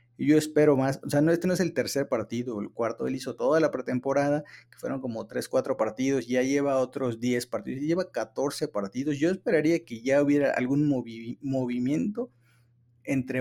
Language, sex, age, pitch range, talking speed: Spanish, male, 30-49, 120-145 Hz, 190 wpm